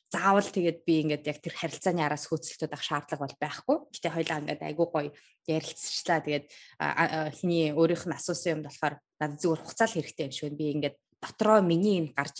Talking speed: 145 wpm